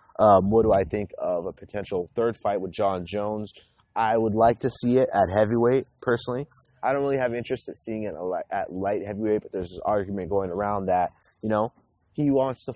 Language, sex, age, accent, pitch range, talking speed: English, male, 30-49, American, 95-115 Hz, 210 wpm